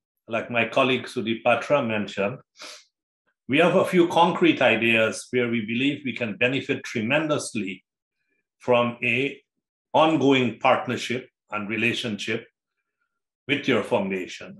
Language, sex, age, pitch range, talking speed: English, male, 60-79, 110-145 Hz, 110 wpm